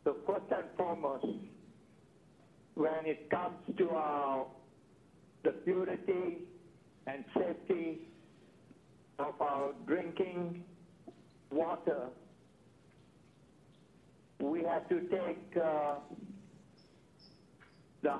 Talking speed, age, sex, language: 75 wpm, 60-79, male, English